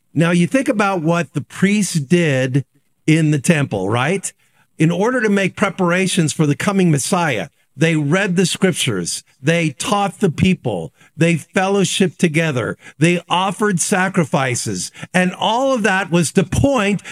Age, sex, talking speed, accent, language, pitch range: 50-69, male, 145 wpm, American, English, 170-260 Hz